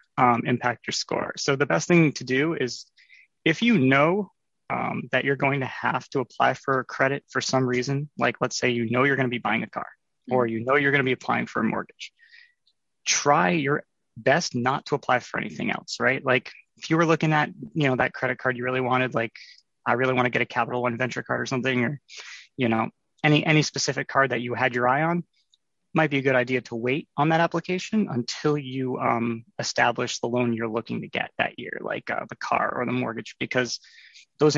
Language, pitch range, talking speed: English, 120-145 Hz, 225 wpm